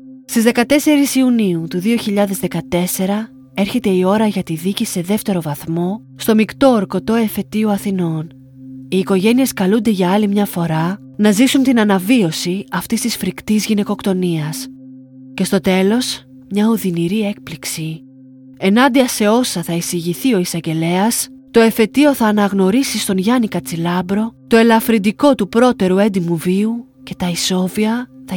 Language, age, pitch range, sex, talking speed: Greek, 30-49, 175-225 Hz, female, 135 wpm